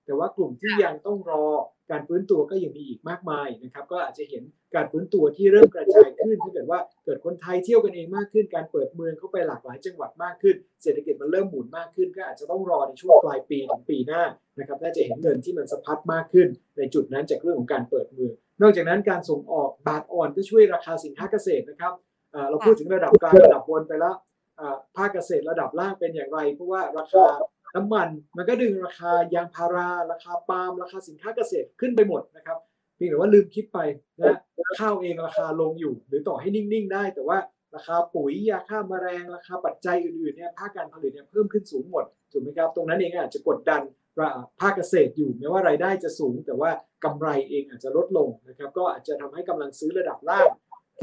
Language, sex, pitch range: Thai, male, 165-220 Hz